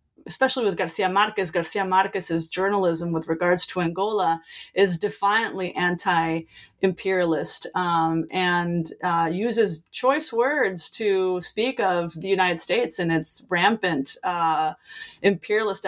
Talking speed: 115 wpm